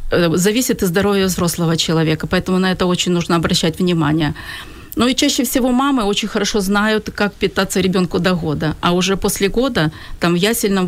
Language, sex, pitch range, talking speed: Ukrainian, female, 175-205 Hz, 175 wpm